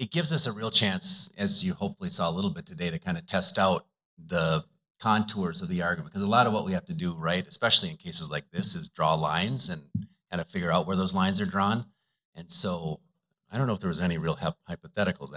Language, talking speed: English, 250 wpm